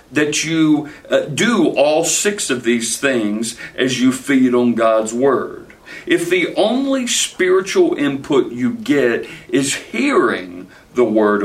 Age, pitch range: 60-79, 115-190 Hz